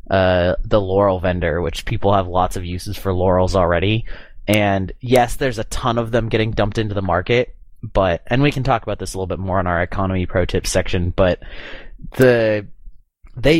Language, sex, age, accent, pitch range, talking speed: English, male, 30-49, American, 95-125 Hz, 200 wpm